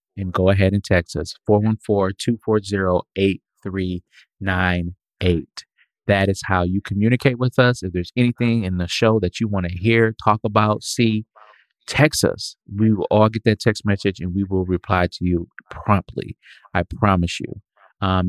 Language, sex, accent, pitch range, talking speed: English, male, American, 90-110 Hz, 155 wpm